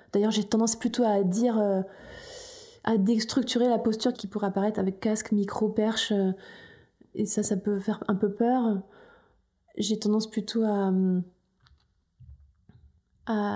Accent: French